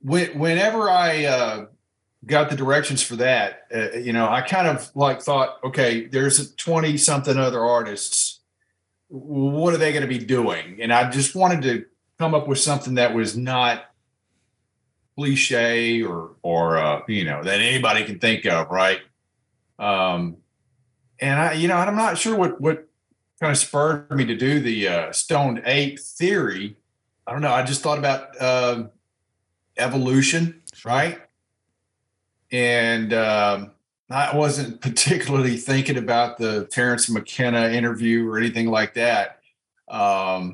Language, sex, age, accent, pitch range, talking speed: English, male, 40-59, American, 110-145 Hz, 150 wpm